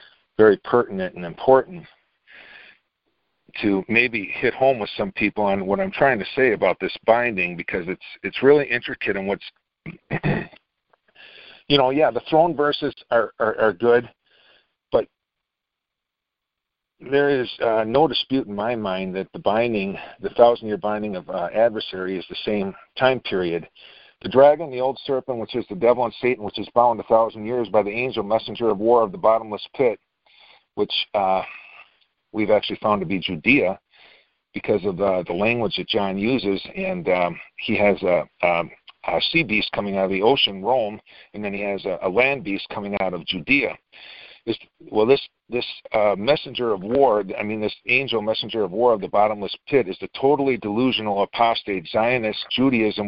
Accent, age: American, 50-69